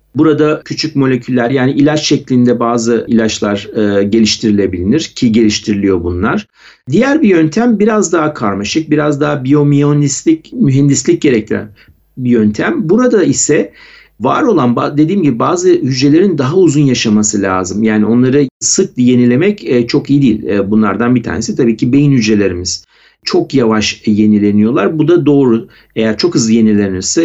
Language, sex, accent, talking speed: Turkish, male, native, 135 wpm